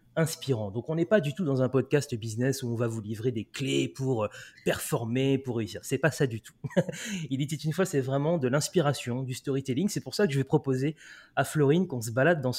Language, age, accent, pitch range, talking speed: French, 20-39, French, 120-155 Hz, 245 wpm